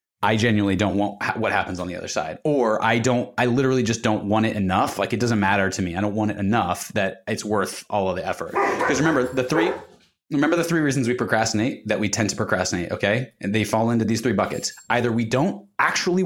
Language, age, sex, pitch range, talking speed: English, 20-39, male, 105-135 Hz, 240 wpm